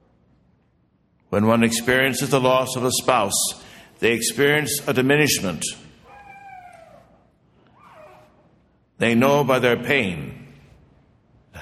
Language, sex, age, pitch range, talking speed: English, male, 60-79, 105-140 Hz, 95 wpm